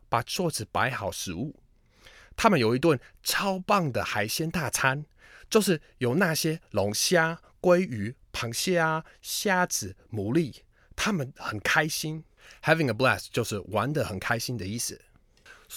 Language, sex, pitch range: Chinese, male, 105-160 Hz